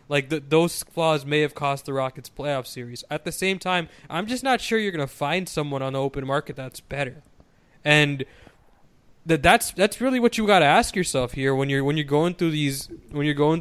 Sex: male